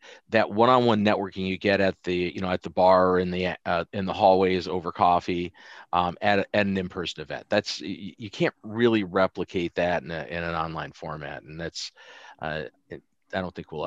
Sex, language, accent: male, English, American